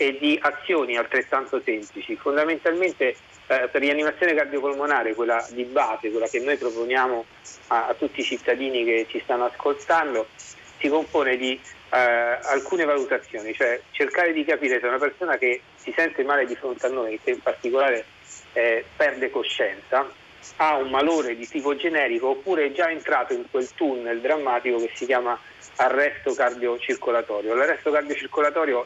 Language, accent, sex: Italian, native, male